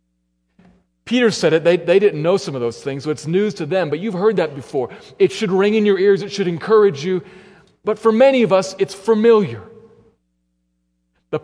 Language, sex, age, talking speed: English, male, 40-59, 205 wpm